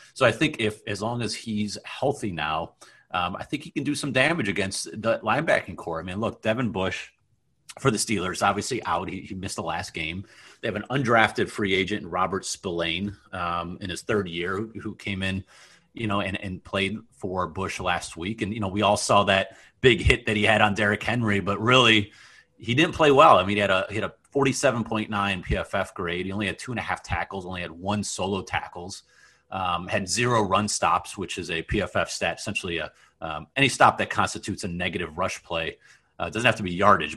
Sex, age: male, 30-49